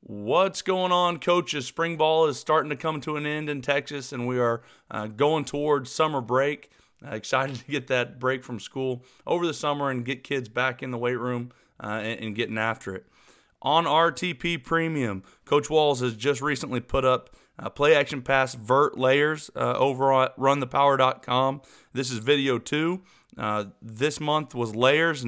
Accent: American